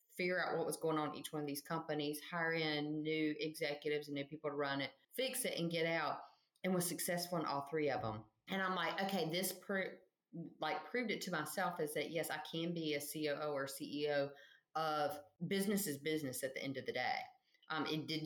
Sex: female